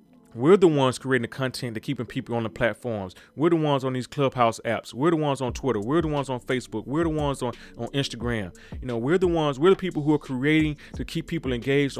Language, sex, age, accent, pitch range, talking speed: English, male, 30-49, American, 120-140 Hz, 250 wpm